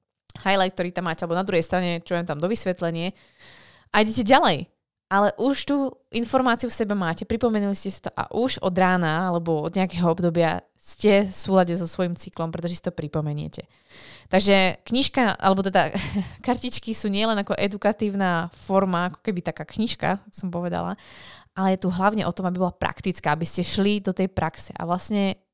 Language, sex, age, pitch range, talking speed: Slovak, female, 20-39, 170-205 Hz, 185 wpm